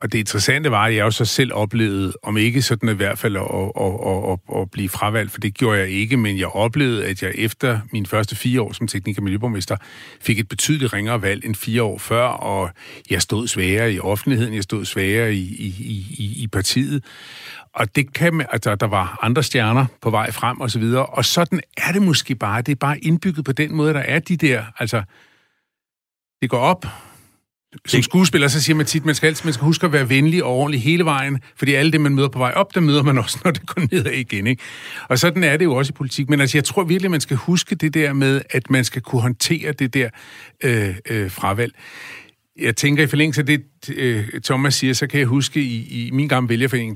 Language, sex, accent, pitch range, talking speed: Danish, male, native, 105-140 Hz, 230 wpm